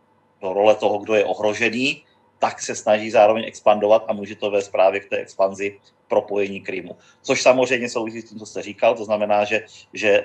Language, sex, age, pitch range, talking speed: Czech, male, 30-49, 100-130 Hz, 195 wpm